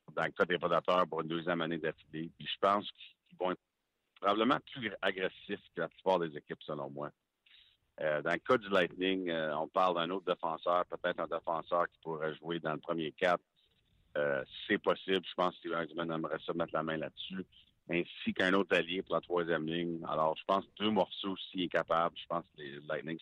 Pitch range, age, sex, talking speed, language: 80-90 Hz, 50-69, male, 205 wpm, French